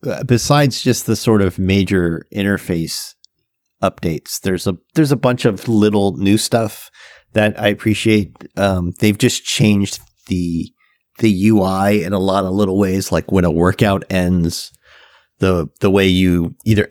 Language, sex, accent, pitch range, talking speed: English, male, American, 90-105 Hz, 155 wpm